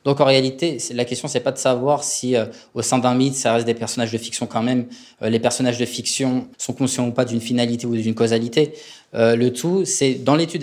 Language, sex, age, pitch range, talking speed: French, male, 20-39, 120-135 Hz, 250 wpm